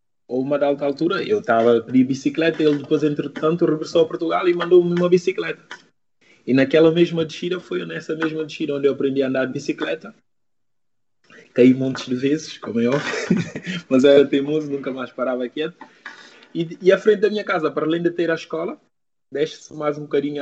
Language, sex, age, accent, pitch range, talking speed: Portuguese, male, 20-39, Brazilian, 130-165 Hz, 190 wpm